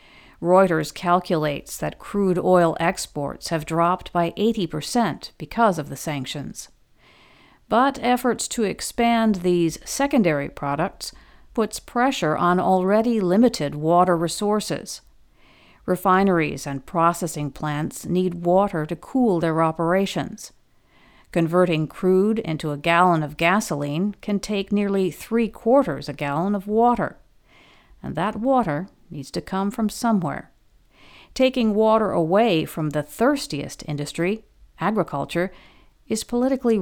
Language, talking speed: English, 115 wpm